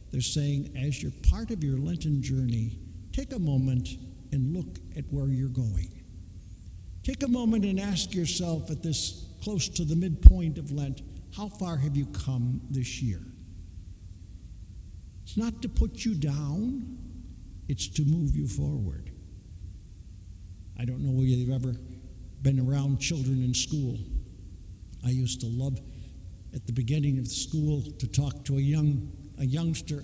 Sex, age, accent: male, 60-79, American